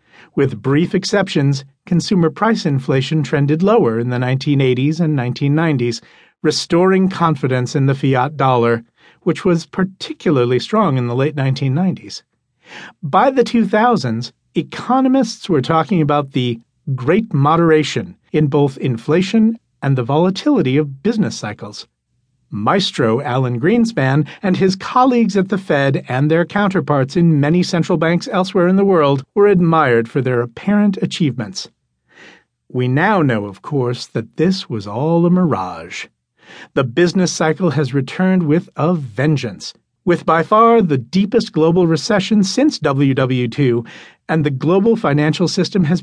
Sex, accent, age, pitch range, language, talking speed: male, American, 50-69, 135-185 Hz, English, 140 wpm